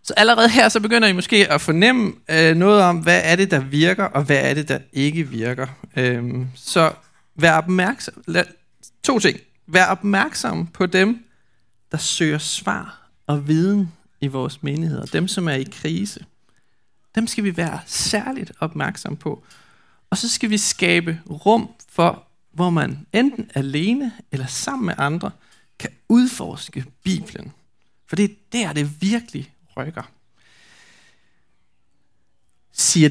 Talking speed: 150 wpm